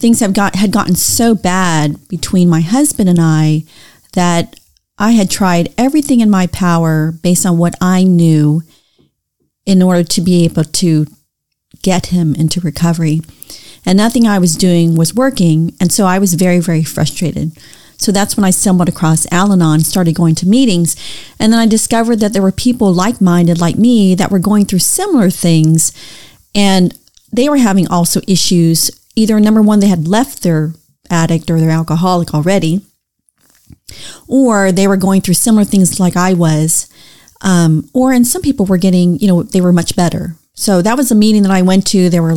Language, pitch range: English, 165-205 Hz